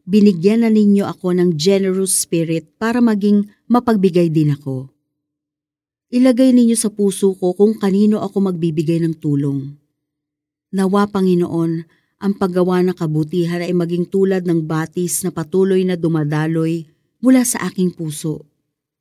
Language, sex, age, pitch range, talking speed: Filipino, female, 40-59, 150-220 Hz, 135 wpm